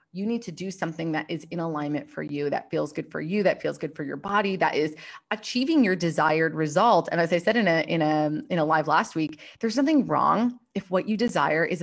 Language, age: English, 20-39